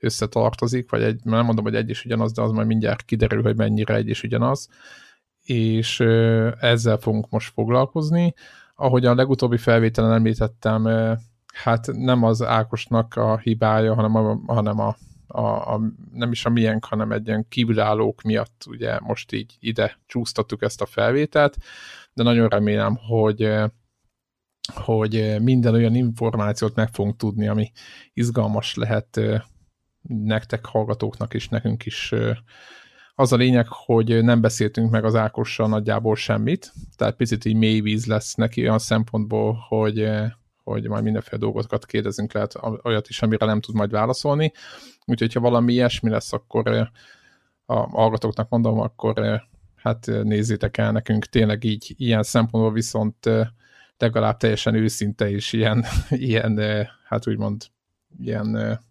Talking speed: 140 wpm